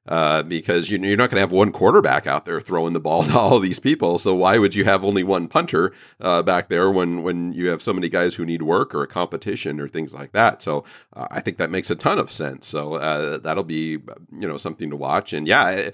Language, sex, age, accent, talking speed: English, male, 40-59, American, 250 wpm